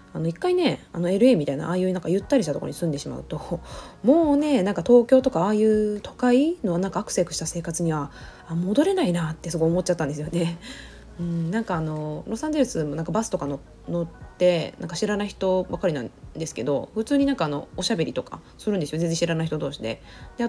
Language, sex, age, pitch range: Japanese, female, 20-39, 155-255 Hz